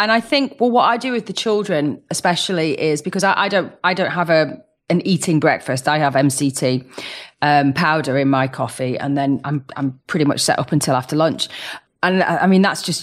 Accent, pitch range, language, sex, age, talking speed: British, 155-190 Hz, English, female, 30-49, 215 wpm